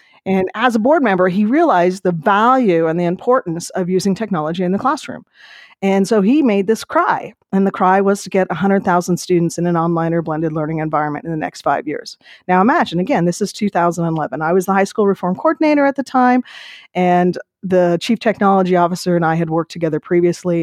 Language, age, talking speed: English, 40-59, 205 wpm